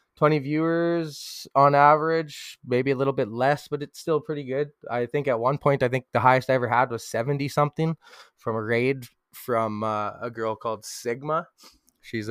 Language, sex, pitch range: English, male, 115-145 Hz